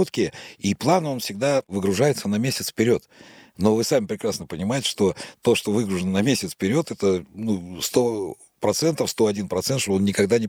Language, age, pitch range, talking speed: Russian, 60-79, 100-125 Hz, 155 wpm